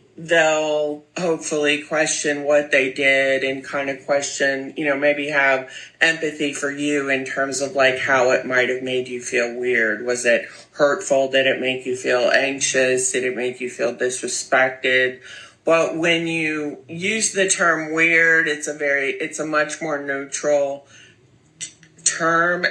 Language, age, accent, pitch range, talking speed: English, 30-49, American, 135-155 Hz, 160 wpm